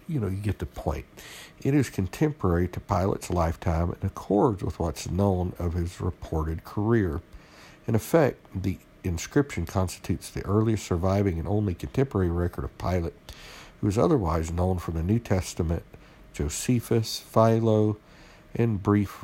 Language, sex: English, male